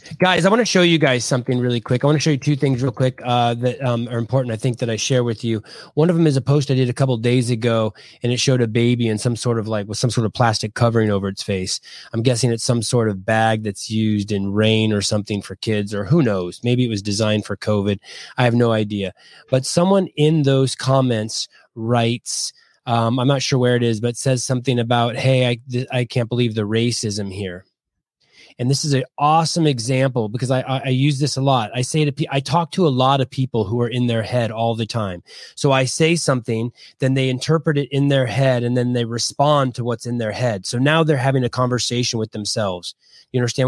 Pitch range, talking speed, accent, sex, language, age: 115-140 Hz, 245 wpm, American, male, English, 20-39